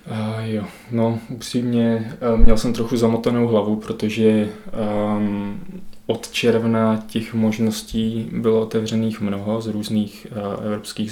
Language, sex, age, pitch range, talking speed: Czech, male, 20-39, 105-115 Hz, 115 wpm